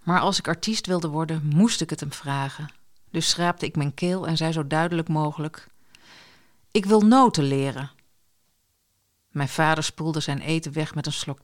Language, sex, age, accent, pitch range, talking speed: Dutch, female, 50-69, Dutch, 140-185 Hz, 180 wpm